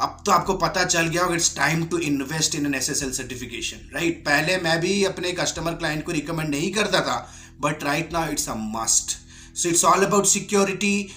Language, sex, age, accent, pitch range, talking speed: Hindi, male, 30-49, native, 150-190 Hz, 190 wpm